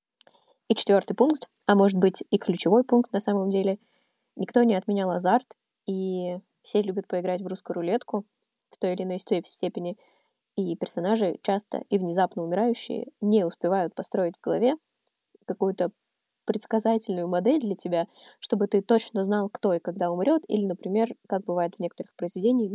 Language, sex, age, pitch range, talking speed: Russian, female, 20-39, 185-230 Hz, 160 wpm